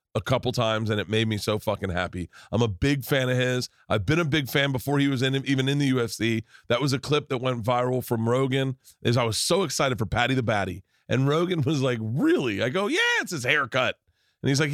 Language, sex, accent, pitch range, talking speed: English, male, American, 105-135 Hz, 250 wpm